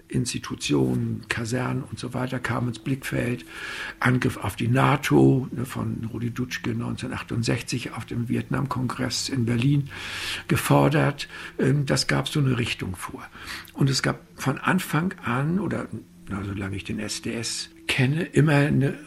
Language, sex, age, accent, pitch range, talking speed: German, male, 60-79, German, 115-140 Hz, 130 wpm